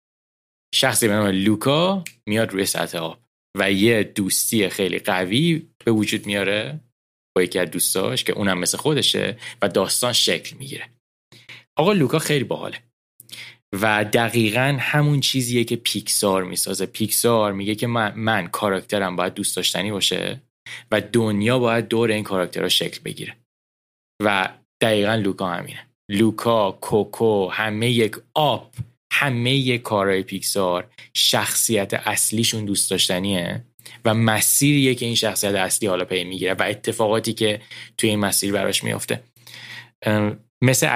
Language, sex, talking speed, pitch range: Persian, male, 130 wpm, 95-120 Hz